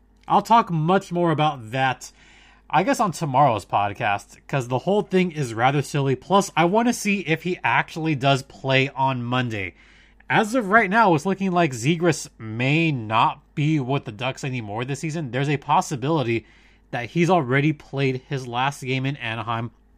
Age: 30-49